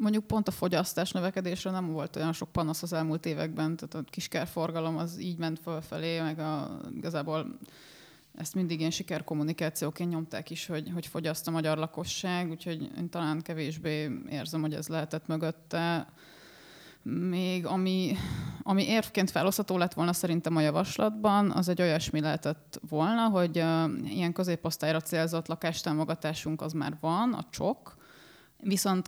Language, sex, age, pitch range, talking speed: Hungarian, female, 30-49, 155-175 Hz, 150 wpm